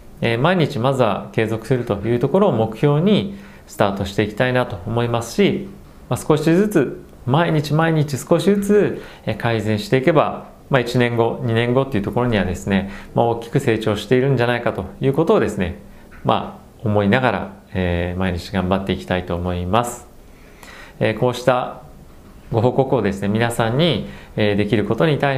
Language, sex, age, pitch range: Japanese, male, 40-59, 100-130 Hz